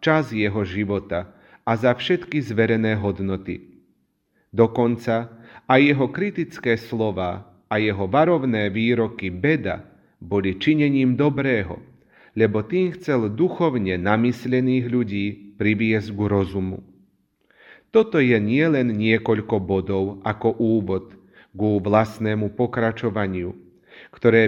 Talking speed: 100 wpm